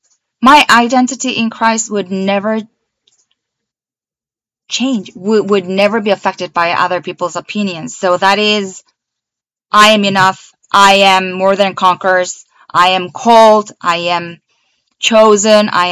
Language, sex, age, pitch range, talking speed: English, female, 20-39, 175-210 Hz, 130 wpm